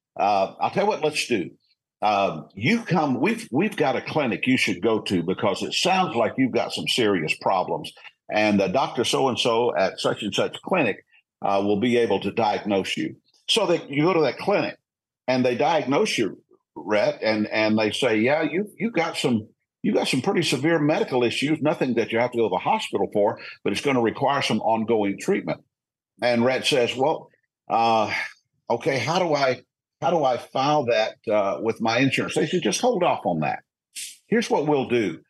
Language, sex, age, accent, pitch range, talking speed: English, male, 50-69, American, 105-150 Hz, 205 wpm